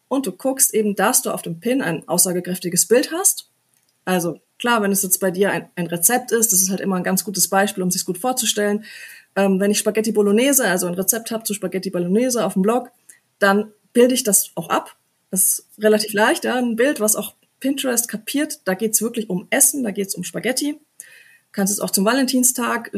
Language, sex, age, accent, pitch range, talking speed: German, female, 30-49, German, 190-235 Hz, 225 wpm